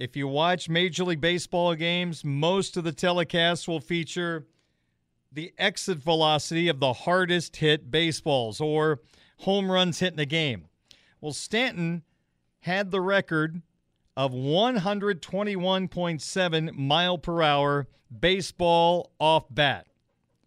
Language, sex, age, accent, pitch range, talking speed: English, male, 40-59, American, 150-205 Hz, 120 wpm